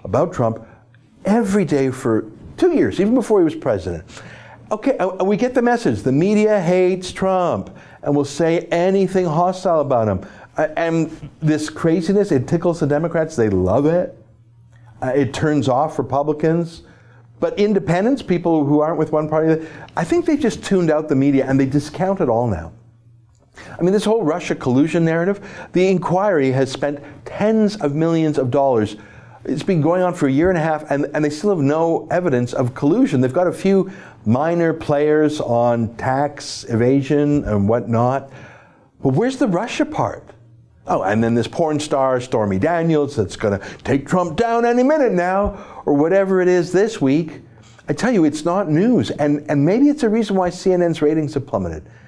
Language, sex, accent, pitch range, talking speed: English, male, American, 130-180 Hz, 175 wpm